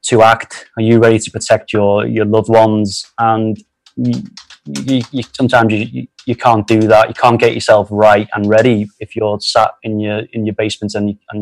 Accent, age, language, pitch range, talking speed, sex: British, 20-39, English, 105-120 Hz, 205 wpm, male